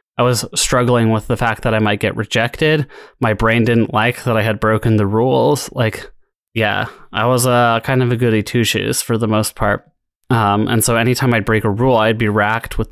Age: 20-39